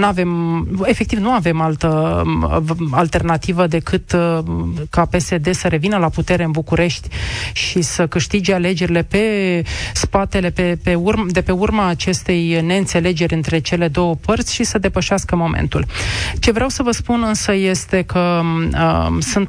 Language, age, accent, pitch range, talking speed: Romanian, 30-49, native, 165-190 Hz, 150 wpm